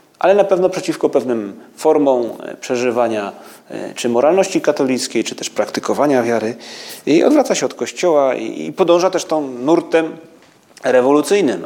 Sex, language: male, Polish